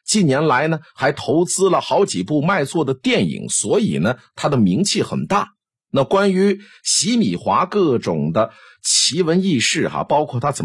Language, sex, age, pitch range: Chinese, male, 50-69, 120-200 Hz